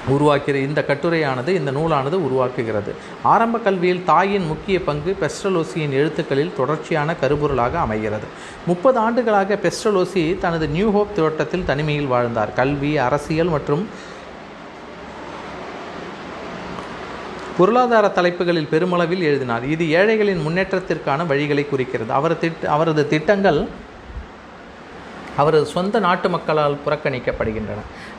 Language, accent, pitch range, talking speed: Tamil, native, 140-180 Hz, 95 wpm